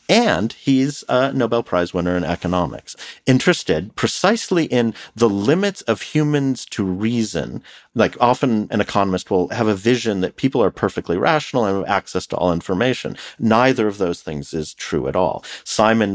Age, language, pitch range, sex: 40-59, English, 95-140 Hz, male